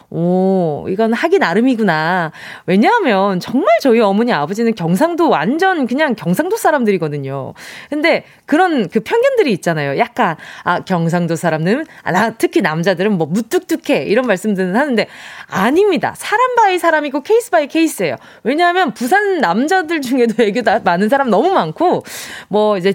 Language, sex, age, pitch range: Korean, female, 20-39, 195-315 Hz